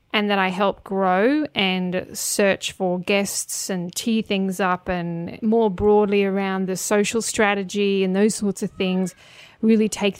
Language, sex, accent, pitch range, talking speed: English, female, Australian, 190-240 Hz, 160 wpm